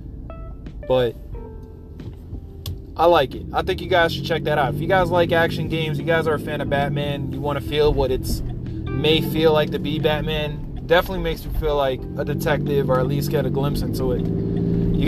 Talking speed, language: 210 wpm, English